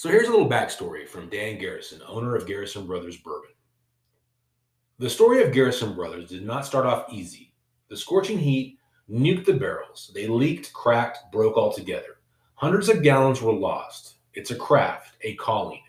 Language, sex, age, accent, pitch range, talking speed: English, male, 30-49, American, 120-150 Hz, 165 wpm